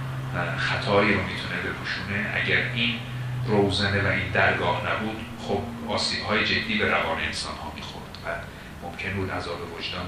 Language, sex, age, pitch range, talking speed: Persian, male, 40-59, 80-105 Hz, 135 wpm